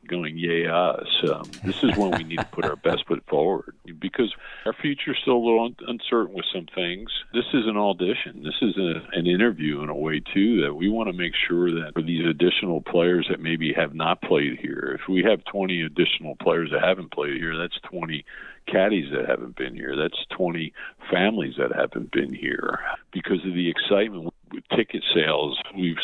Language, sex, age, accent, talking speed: English, male, 50-69, American, 205 wpm